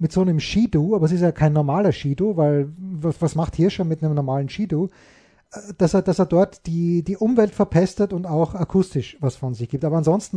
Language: German